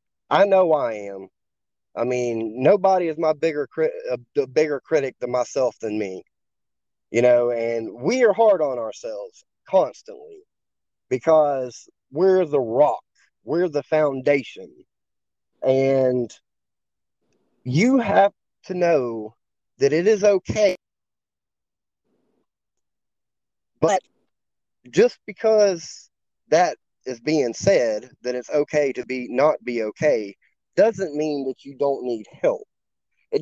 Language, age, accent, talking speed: English, 30-49, American, 115 wpm